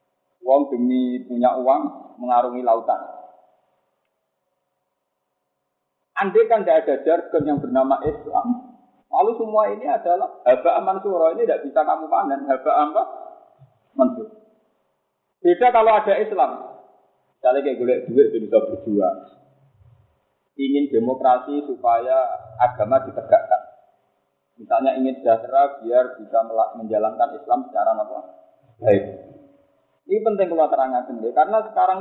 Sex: male